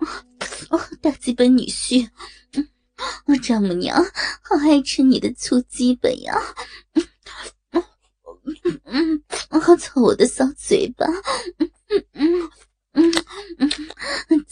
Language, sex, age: Chinese, female, 20-39